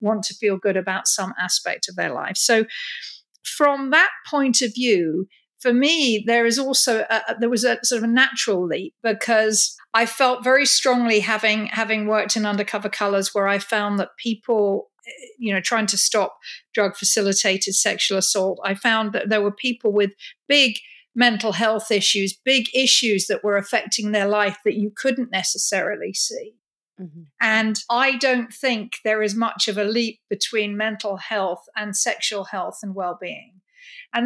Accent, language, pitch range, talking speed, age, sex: British, English, 205-245 Hz, 170 wpm, 50-69, female